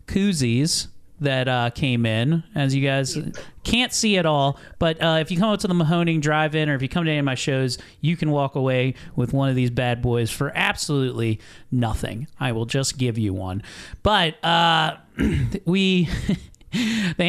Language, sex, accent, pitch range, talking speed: English, male, American, 115-150 Hz, 190 wpm